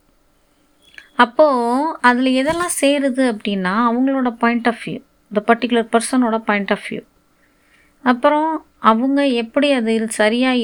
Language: Tamil